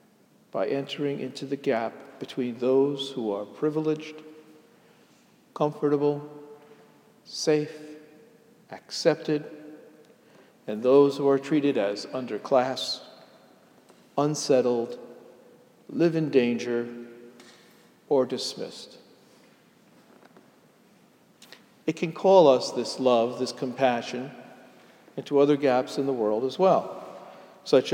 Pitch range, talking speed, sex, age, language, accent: 125-145 Hz, 90 wpm, male, 50-69, English, American